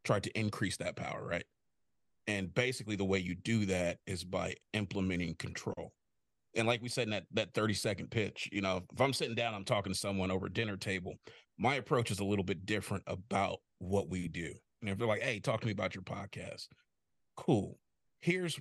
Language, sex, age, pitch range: English, male, 30-49, 95-115 Hz